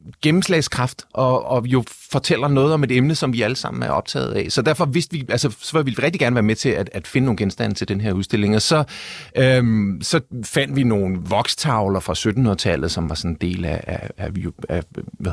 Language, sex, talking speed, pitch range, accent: Danish, male, 225 wpm, 100-145 Hz, native